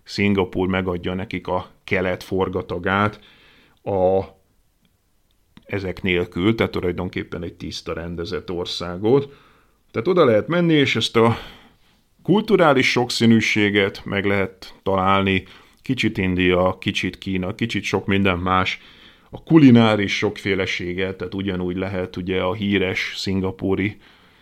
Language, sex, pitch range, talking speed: Hungarian, male, 95-105 Hz, 110 wpm